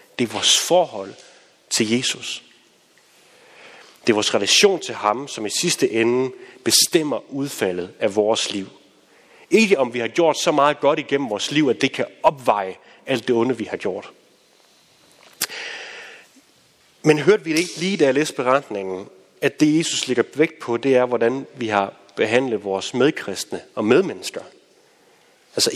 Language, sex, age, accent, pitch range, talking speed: Danish, male, 30-49, native, 115-165 Hz, 160 wpm